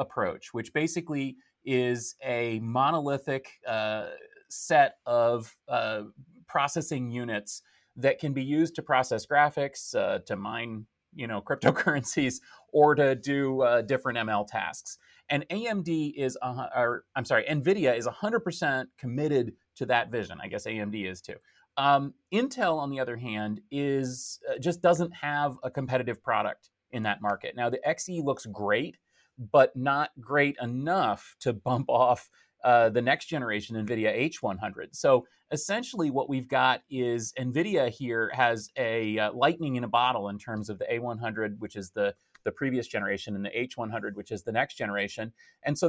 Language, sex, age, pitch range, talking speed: English, male, 30-49, 115-145 Hz, 160 wpm